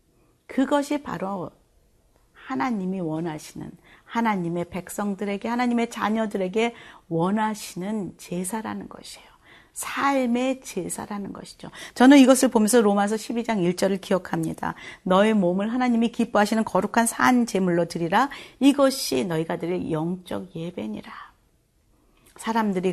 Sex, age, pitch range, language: female, 40-59, 170-220 Hz, Korean